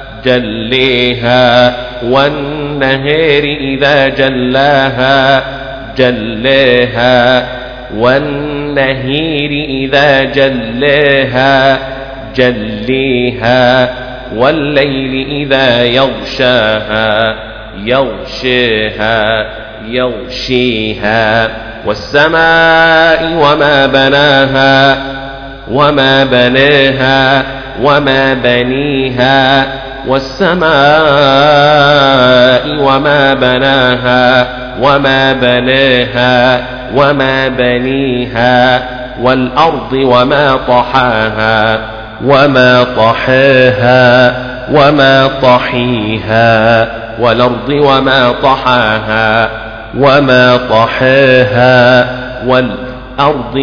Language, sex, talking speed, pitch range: Arabic, male, 50 wpm, 125-135 Hz